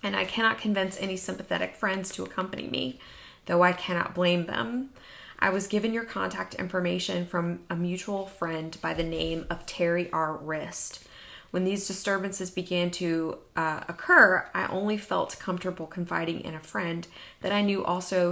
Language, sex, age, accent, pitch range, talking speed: English, female, 20-39, American, 160-195 Hz, 165 wpm